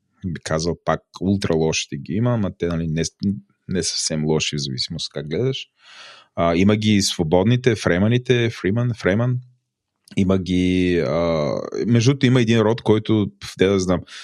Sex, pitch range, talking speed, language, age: male, 85-115 Hz, 150 wpm, Bulgarian, 30-49